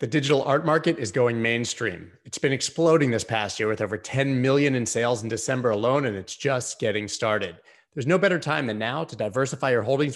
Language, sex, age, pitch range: English, male, 30-49, 115-150 Hz